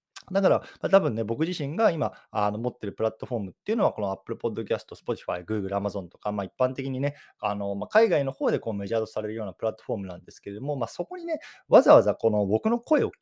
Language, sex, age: Japanese, male, 20-39